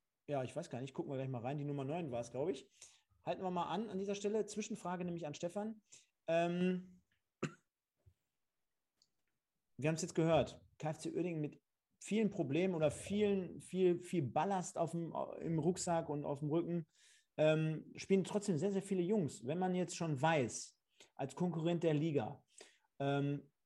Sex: male